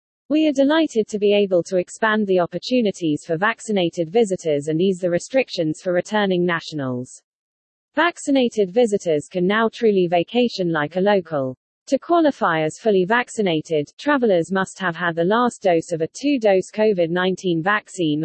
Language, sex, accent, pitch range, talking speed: English, female, British, 165-220 Hz, 150 wpm